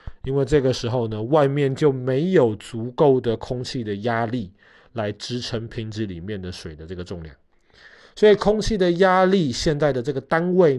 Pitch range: 110-155 Hz